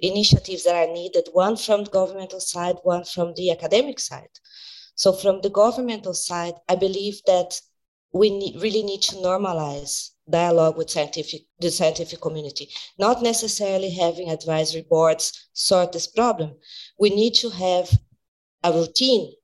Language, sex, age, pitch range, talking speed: English, female, 20-39, 170-215 Hz, 140 wpm